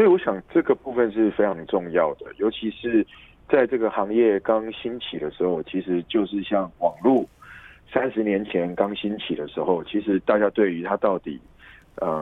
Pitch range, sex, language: 95-110 Hz, male, Korean